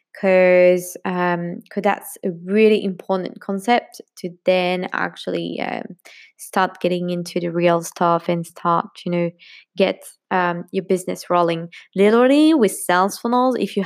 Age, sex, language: 20-39, female, English